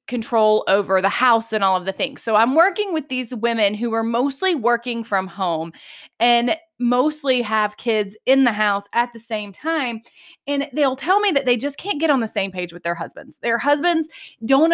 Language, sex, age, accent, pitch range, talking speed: English, female, 20-39, American, 220-285 Hz, 210 wpm